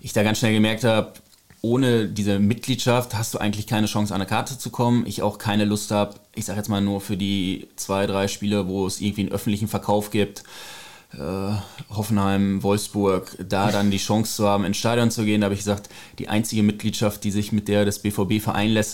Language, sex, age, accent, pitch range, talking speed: German, male, 20-39, German, 100-110 Hz, 220 wpm